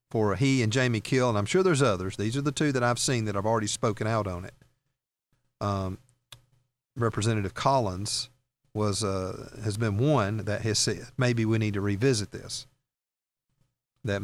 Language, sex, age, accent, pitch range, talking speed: English, male, 40-59, American, 110-130 Hz, 175 wpm